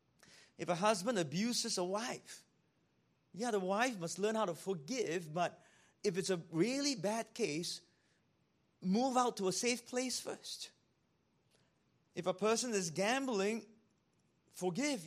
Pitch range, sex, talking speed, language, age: 150-215 Hz, male, 135 wpm, English, 30-49